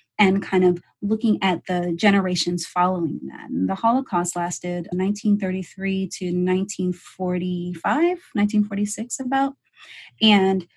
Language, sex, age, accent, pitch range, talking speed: English, female, 30-49, American, 180-220 Hz, 90 wpm